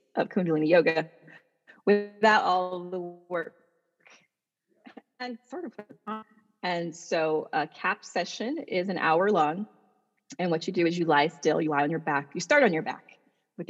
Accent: American